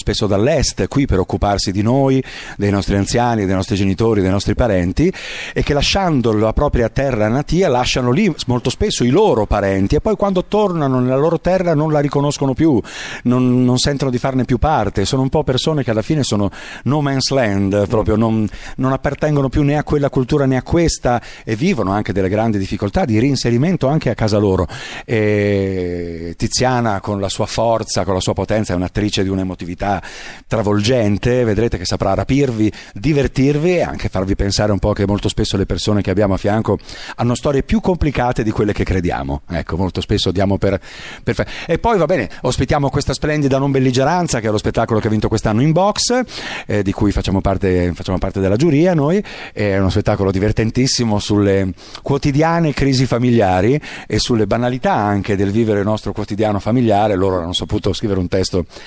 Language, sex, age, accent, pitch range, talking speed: Italian, male, 50-69, native, 100-135 Hz, 190 wpm